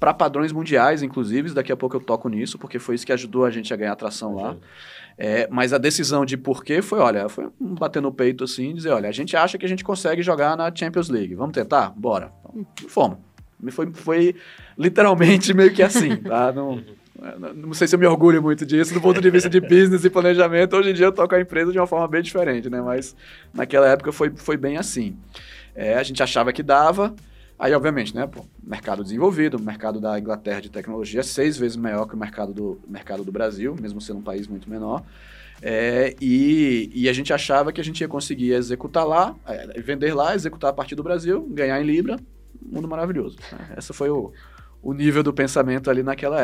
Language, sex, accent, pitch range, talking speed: Portuguese, male, Brazilian, 125-175 Hz, 210 wpm